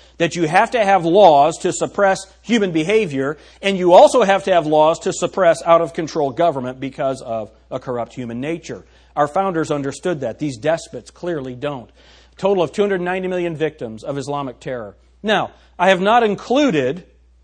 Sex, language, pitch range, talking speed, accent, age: male, English, 130-195 Hz, 165 wpm, American, 40-59